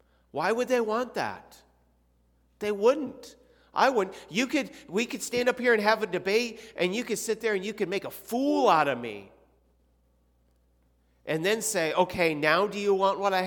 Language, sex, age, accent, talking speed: English, male, 40-59, American, 195 wpm